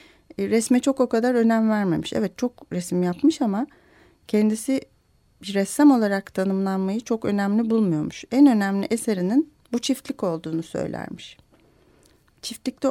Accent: native